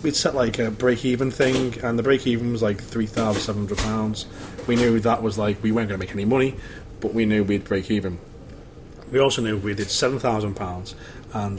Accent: British